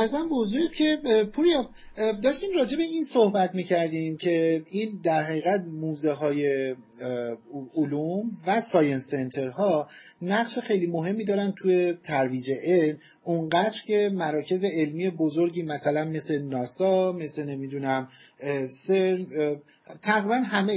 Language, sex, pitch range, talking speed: Persian, male, 155-200 Hz, 115 wpm